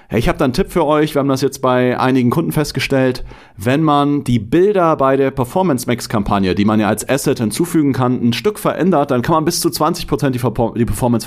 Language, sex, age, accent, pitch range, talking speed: German, male, 40-59, German, 105-135 Hz, 215 wpm